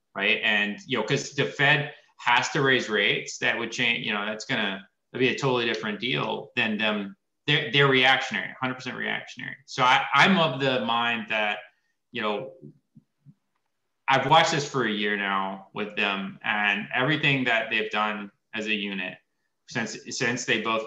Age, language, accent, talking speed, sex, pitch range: 20-39, English, American, 175 wpm, male, 105-125 Hz